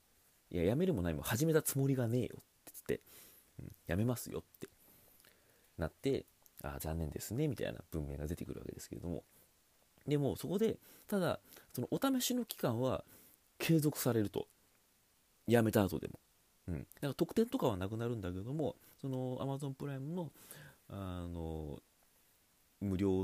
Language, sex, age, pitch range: Japanese, male, 30-49, 80-125 Hz